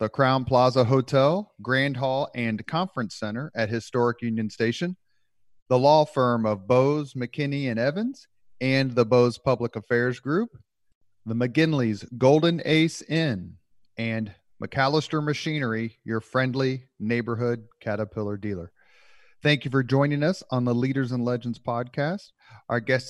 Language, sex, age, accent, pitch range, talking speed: English, male, 40-59, American, 115-140 Hz, 140 wpm